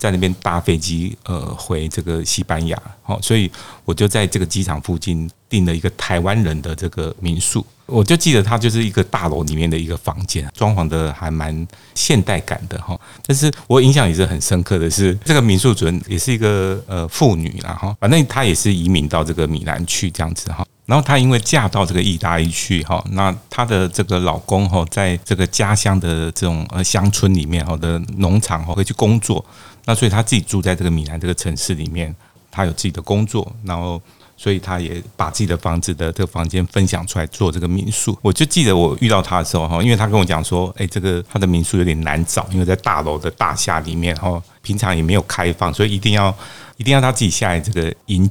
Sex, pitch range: male, 85-105 Hz